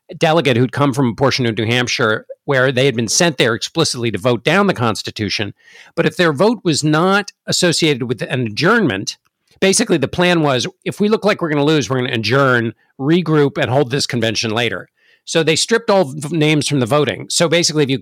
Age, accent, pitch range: 50-69, American, 135-180 Hz